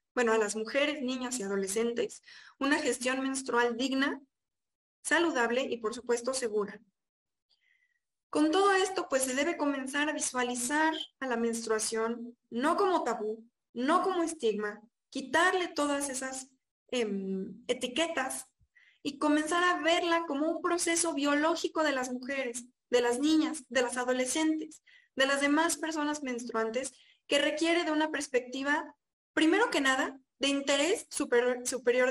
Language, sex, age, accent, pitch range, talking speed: Spanish, female, 20-39, Mexican, 240-315 Hz, 135 wpm